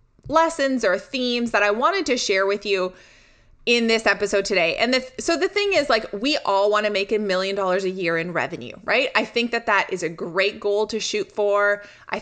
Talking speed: 220 wpm